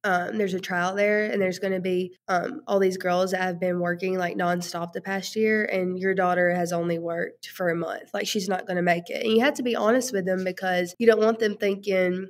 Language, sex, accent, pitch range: English, female, American, 180-200 Hz